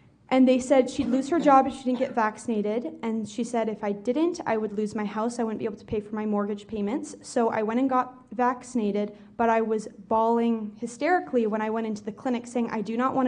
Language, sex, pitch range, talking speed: English, female, 215-250 Hz, 250 wpm